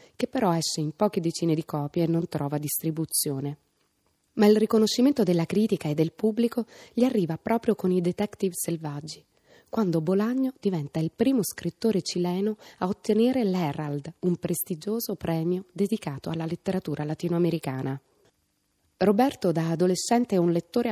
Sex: female